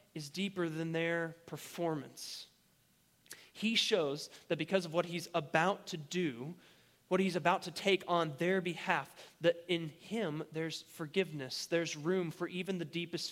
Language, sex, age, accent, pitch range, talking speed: English, male, 20-39, American, 160-200 Hz, 155 wpm